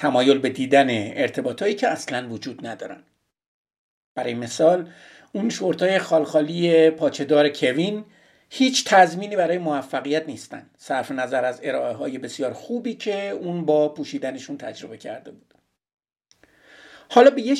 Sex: male